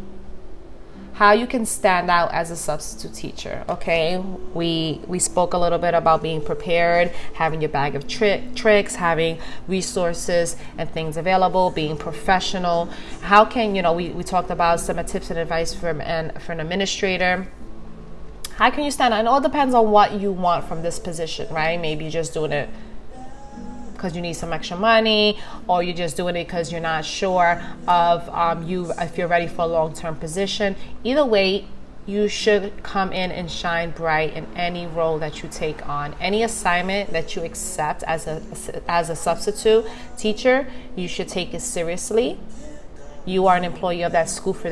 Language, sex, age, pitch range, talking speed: English, female, 30-49, 165-195 Hz, 185 wpm